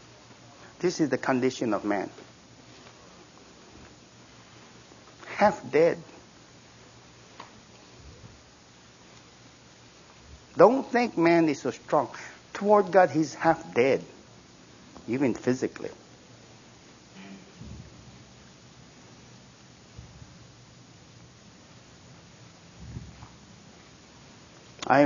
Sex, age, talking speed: male, 60-79, 55 wpm